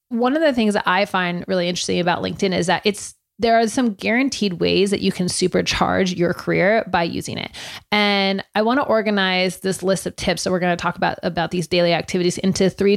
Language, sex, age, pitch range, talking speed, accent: English, female, 30-49, 175-210 Hz, 230 wpm, American